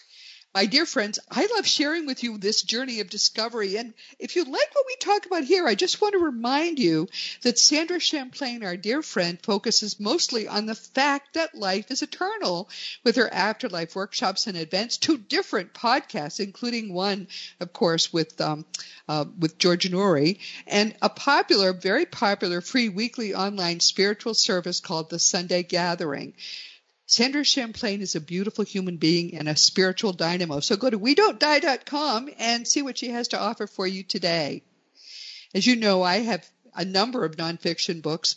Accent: American